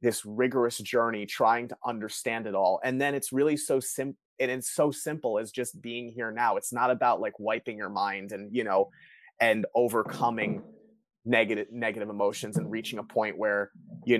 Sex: male